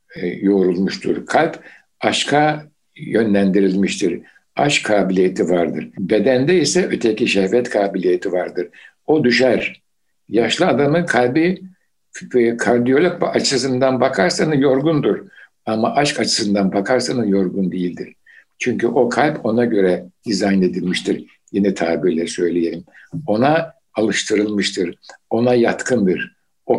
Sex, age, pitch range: male, 60-79, 95-125 Hz